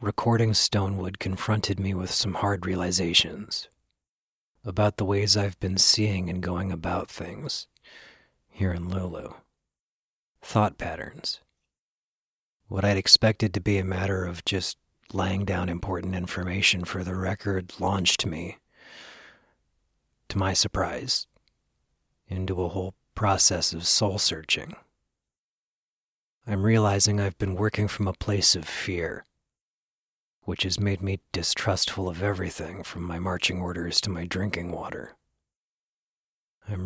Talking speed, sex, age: 125 wpm, male, 40-59